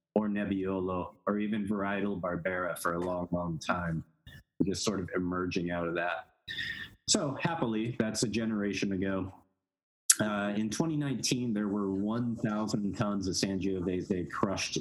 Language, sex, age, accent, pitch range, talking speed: English, male, 30-49, American, 90-110 Hz, 140 wpm